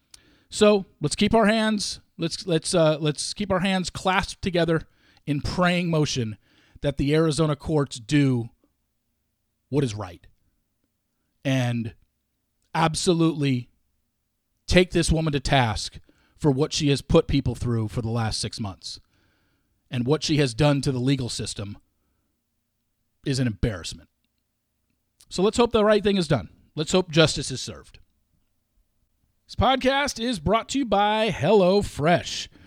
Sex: male